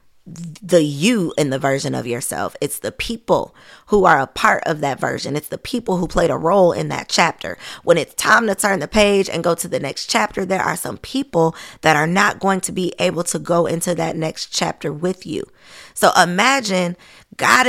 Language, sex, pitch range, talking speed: English, female, 170-225 Hz, 210 wpm